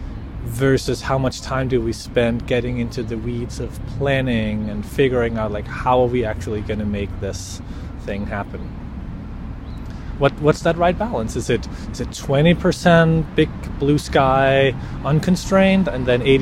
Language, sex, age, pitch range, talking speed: English, male, 30-49, 110-145 Hz, 155 wpm